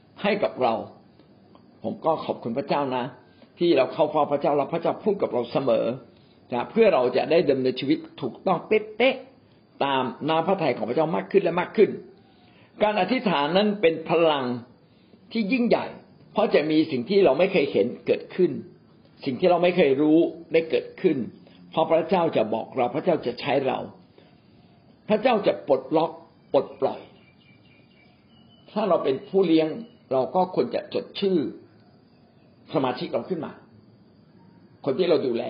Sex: male